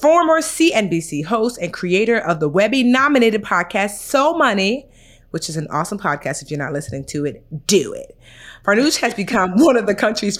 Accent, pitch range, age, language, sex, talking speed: American, 170-245 Hz, 30-49, English, female, 180 wpm